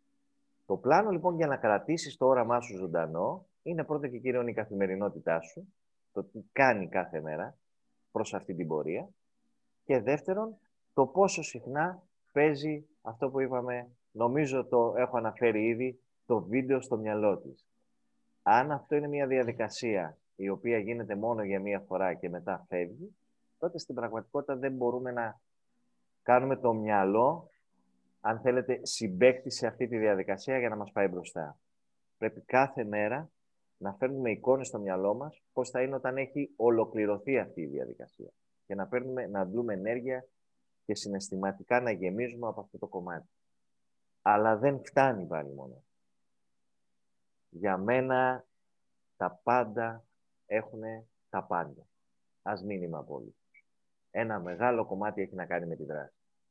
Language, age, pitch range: Greek, 30-49, 95-135 Hz